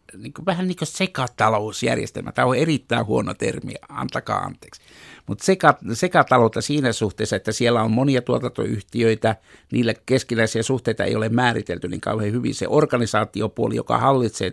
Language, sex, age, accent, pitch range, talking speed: Finnish, male, 60-79, native, 110-130 Hz, 135 wpm